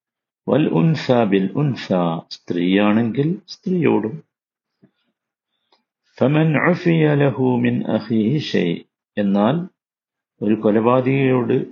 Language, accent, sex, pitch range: Malayalam, native, male, 100-130 Hz